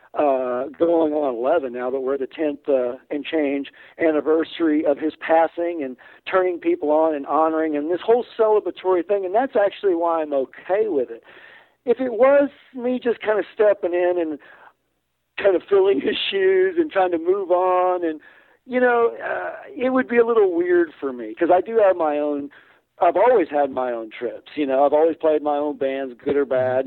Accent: American